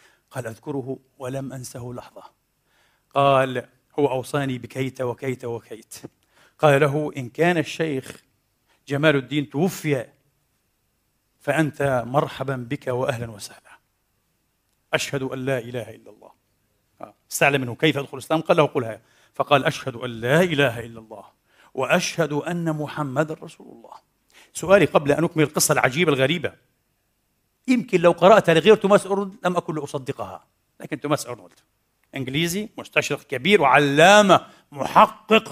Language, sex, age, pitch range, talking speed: Arabic, male, 50-69, 130-185 Hz, 125 wpm